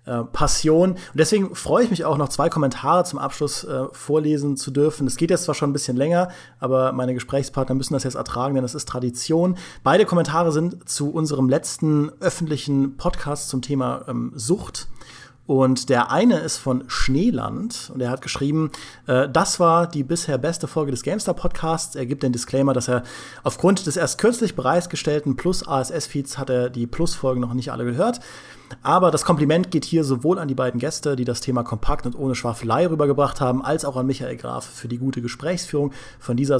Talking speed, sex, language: 190 wpm, male, German